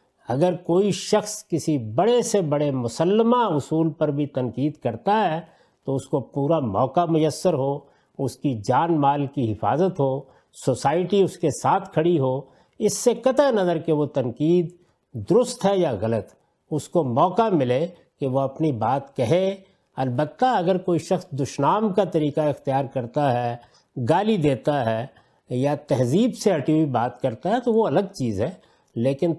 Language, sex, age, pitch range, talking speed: Urdu, male, 50-69, 140-195 Hz, 165 wpm